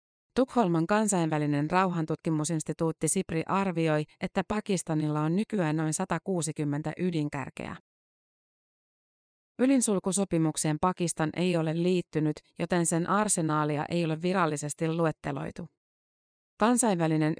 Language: Finnish